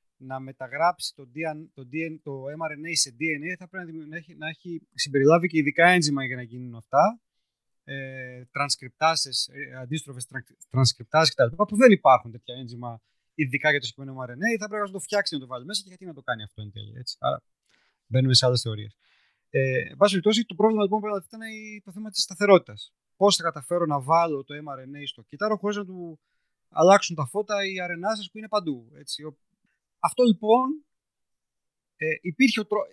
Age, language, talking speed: 30-49, Greek, 175 wpm